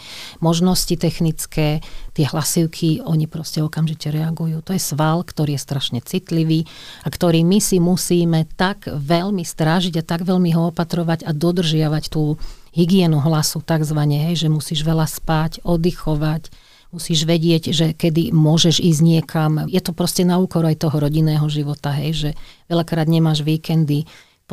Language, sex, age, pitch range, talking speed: Slovak, female, 40-59, 145-165 Hz, 145 wpm